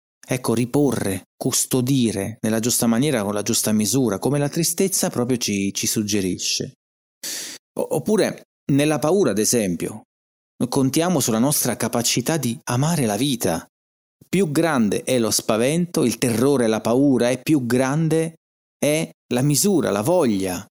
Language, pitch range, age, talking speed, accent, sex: Italian, 105-135 Hz, 30-49, 135 wpm, native, male